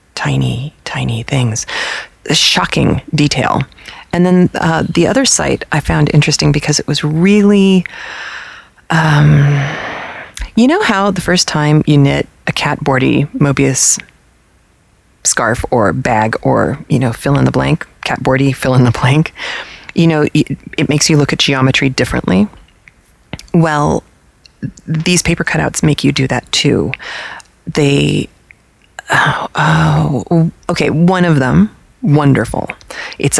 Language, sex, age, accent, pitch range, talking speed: English, female, 30-49, American, 140-175 Hz, 135 wpm